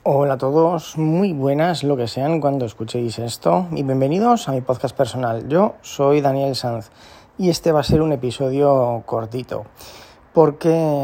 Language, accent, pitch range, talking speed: Spanish, Spanish, 120-145 Hz, 165 wpm